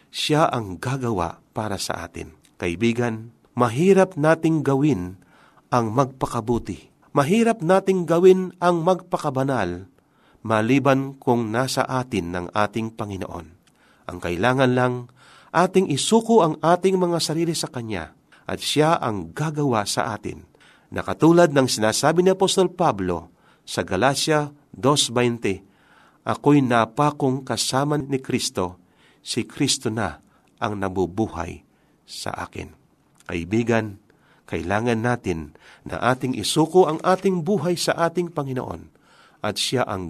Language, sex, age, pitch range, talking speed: Filipino, male, 50-69, 105-160 Hz, 115 wpm